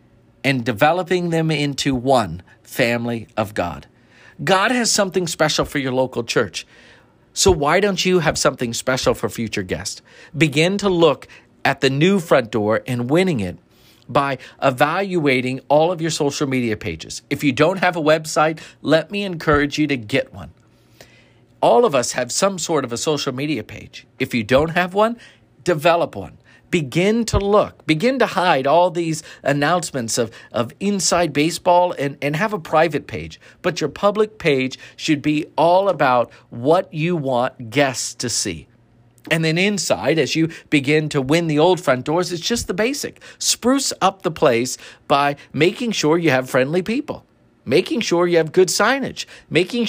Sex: male